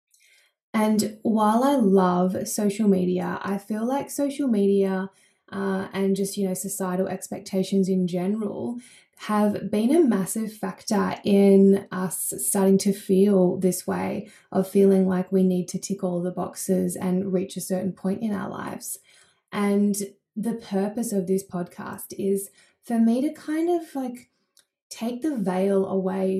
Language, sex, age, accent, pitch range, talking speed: English, female, 20-39, Australian, 190-220 Hz, 150 wpm